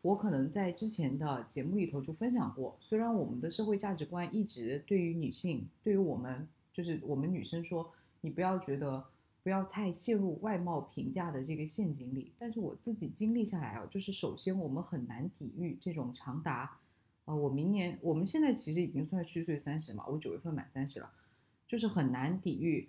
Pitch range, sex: 150-195 Hz, female